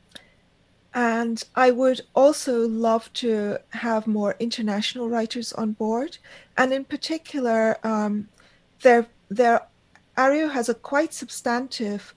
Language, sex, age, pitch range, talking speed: English, female, 40-59, 205-240 Hz, 105 wpm